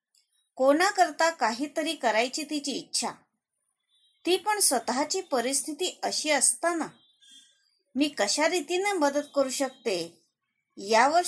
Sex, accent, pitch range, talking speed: female, native, 230-320 Hz, 95 wpm